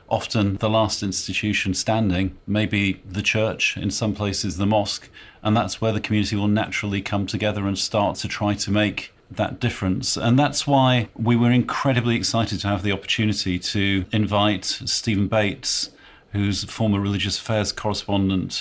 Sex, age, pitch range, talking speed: male, 40-59, 100-115 Hz, 165 wpm